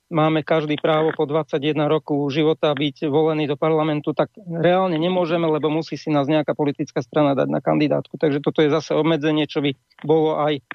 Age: 40-59